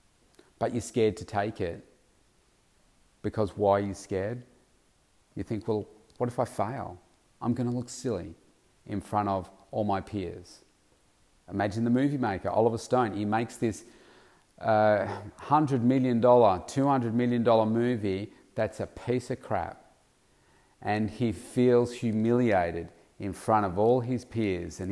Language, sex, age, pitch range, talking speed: English, male, 40-59, 100-120 Hz, 145 wpm